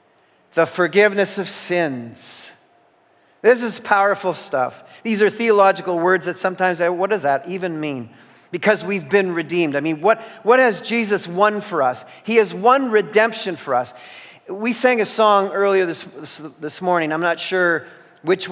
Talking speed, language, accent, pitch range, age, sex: 160 wpm, English, American, 160-220 Hz, 50-69, male